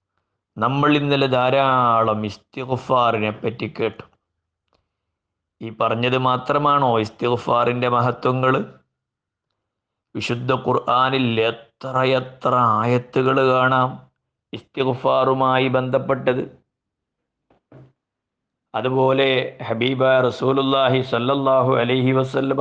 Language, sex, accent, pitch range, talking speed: Malayalam, male, native, 120-135 Hz, 70 wpm